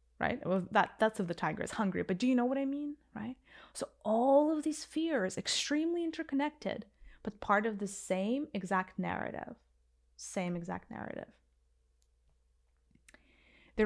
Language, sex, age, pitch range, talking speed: English, female, 20-39, 180-255 Hz, 150 wpm